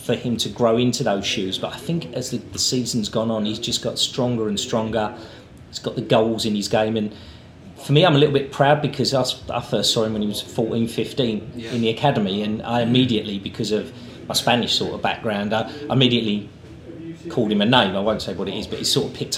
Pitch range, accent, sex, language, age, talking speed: 115-145 Hz, British, male, English, 40-59, 240 wpm